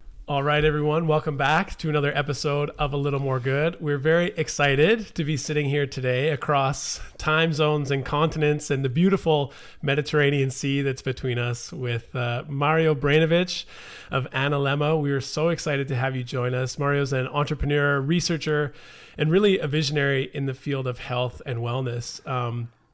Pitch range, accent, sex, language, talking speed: 125-150 Hz, American, male, English, 170 wpm